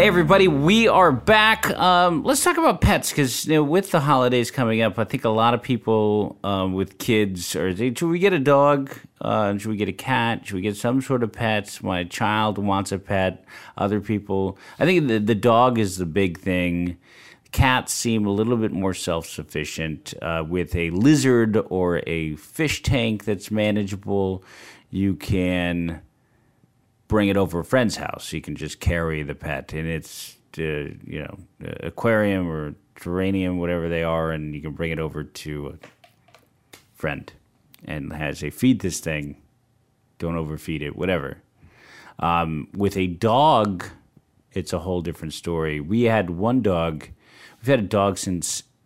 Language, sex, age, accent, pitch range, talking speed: English, male, 50-69, American, 85-115 Hz, 175 wpm